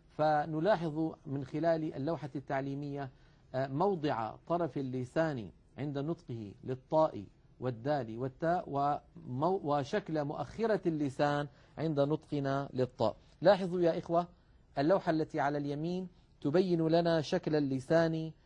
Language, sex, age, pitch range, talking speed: Arabic, male, 50-69, 140-170 Hz, 100 wpm